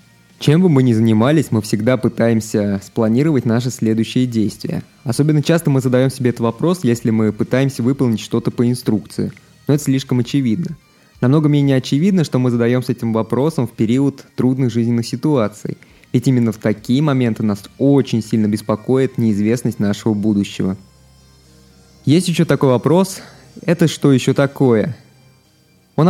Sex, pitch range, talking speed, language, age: male, 115-140 Hz, 145 wpm, Russian, 20-39